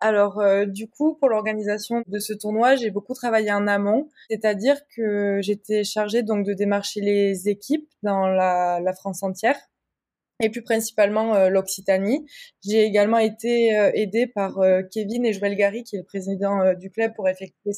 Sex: female